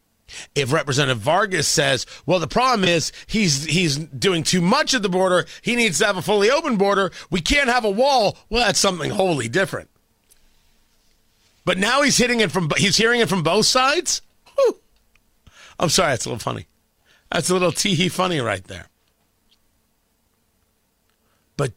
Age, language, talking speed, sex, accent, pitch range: 40-59, English, 170 wpm, male, American, 160-230 Hz